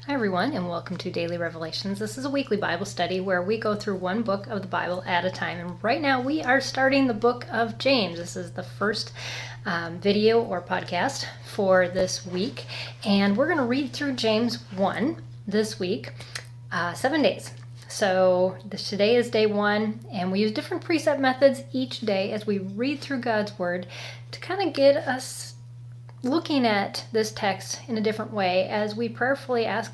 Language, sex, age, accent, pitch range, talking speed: English, female, 30-49, American, 170-235 Hz, 190 wpm